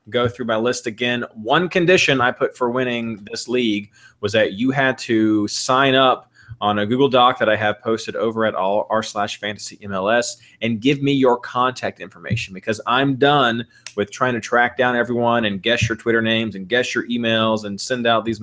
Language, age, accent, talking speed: English, 20-39, American, 200 wpm